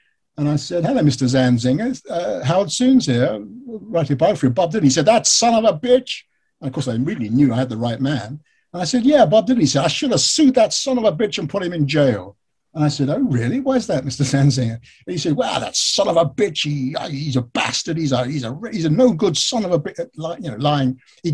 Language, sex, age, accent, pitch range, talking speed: English, male, 50-69, British, 125-165 Hz, 270 wpm